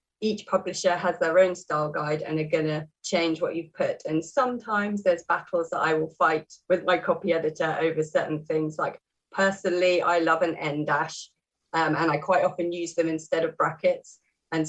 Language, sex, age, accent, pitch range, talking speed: English, female, 30-49, British, 155-185 Hz, 195 wpm